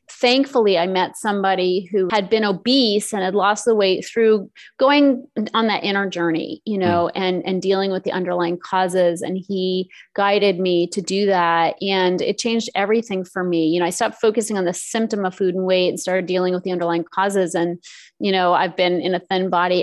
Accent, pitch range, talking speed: American, 180-205 Hz, 210 wpm